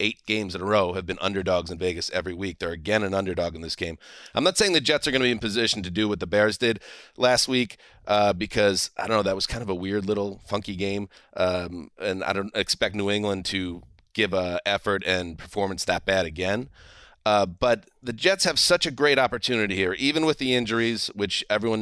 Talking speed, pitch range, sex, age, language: 230 wpm, 95-120 Hz, male, 30-49, English